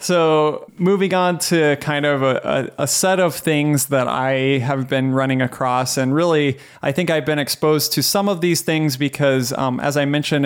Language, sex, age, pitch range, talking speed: English, male, 30-49, 130-150 Hz, 195 wpm